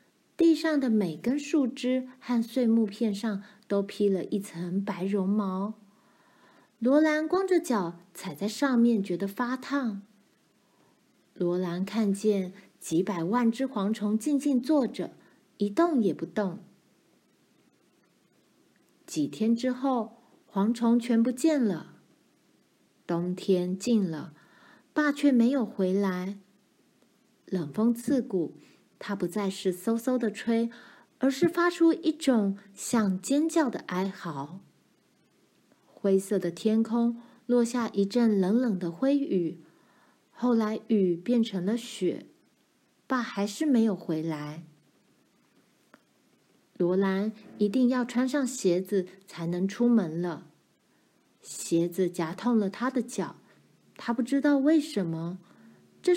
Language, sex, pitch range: Chinese, female, 190-250 Hz